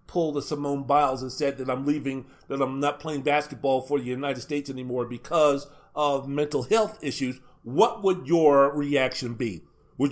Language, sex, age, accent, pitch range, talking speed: English, male, 40-59, American, 135-175 Hz, 180 wpm